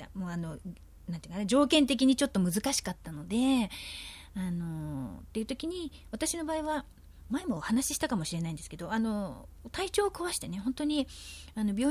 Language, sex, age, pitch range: Japanese, female, 30-49, 170-280 Hz